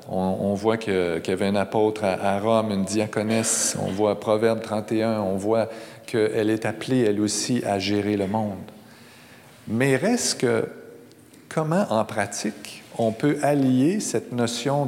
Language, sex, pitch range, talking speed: French, male, 105-140 Hz, 150 wpm